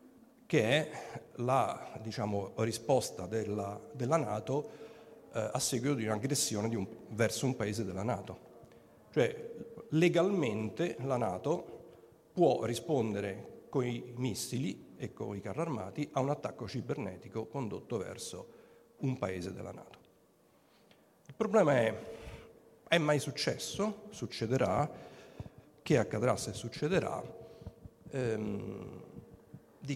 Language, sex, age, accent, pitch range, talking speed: Italian, male, 50-69, native, 110-145 Hz, 115 wpm